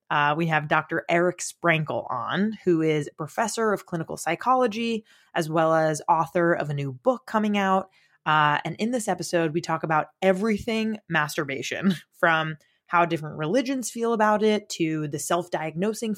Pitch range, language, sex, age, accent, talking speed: 160-210 Hz, English, female, 20-39, American, 165 wpm